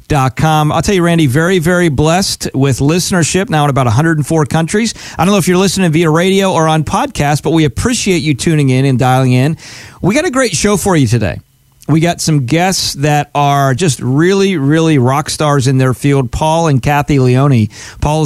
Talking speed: 205 wpm